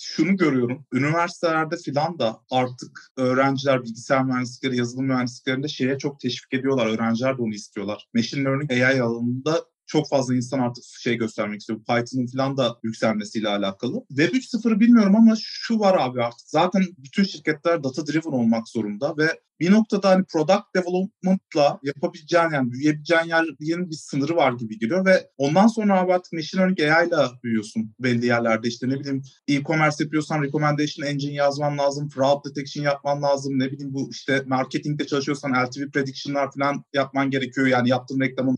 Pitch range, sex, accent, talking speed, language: 125-170 Hz, male, native, 160 wpm, Turkish